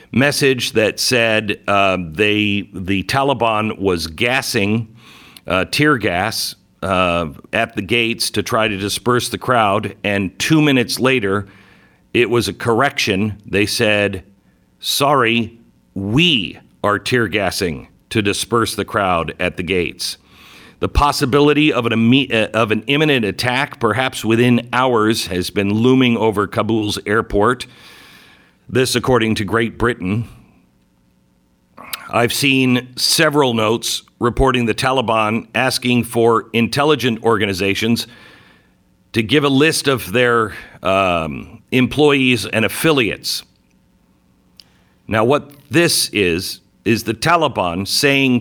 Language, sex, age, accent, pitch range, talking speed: English, male, 50-69, American, 100-125 Hz, 120 wpm